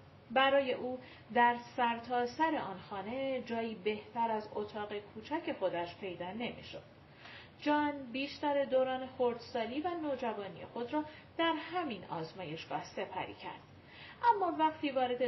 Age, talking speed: 40-59, 120 wpm